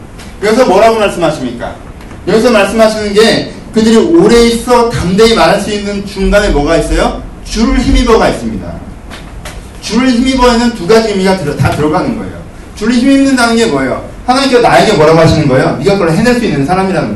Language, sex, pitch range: Korean, male, 170-230 Hz